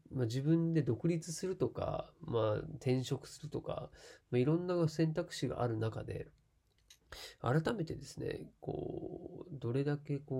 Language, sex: Japanese, male